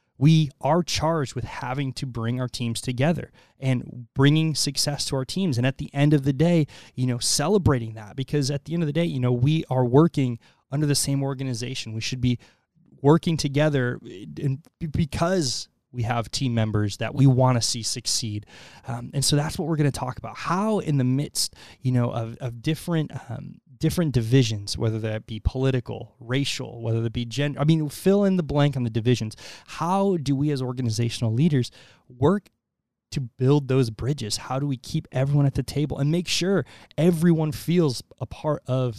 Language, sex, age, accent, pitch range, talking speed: English, male, 20-39, American, 120-150 Hz, 195 wpm